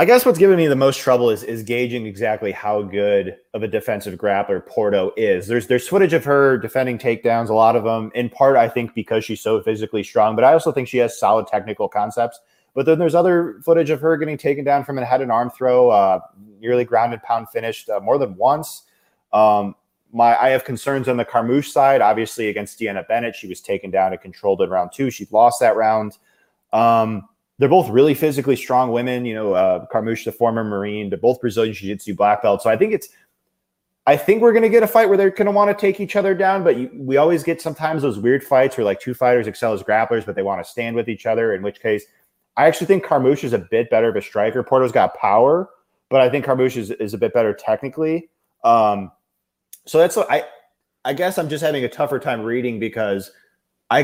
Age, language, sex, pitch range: 20-39, English, male, 110-150 Hz